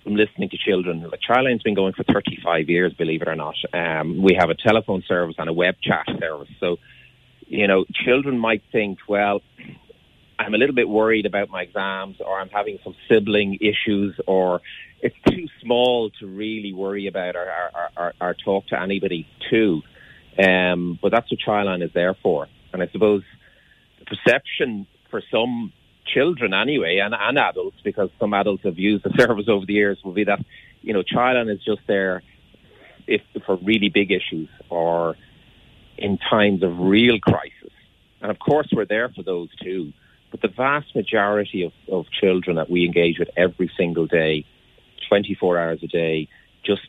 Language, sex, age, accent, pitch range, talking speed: English, male, 30-49, Irish, 85-105 Hz, 185 wpm